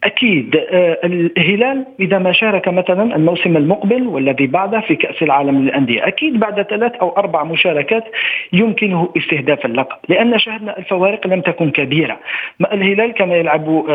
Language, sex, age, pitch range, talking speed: Arabic, male, 50-69, 155-215 Hz, 140 wpm